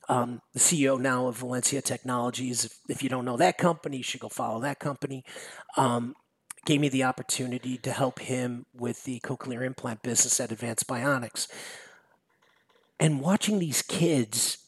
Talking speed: 165 wpm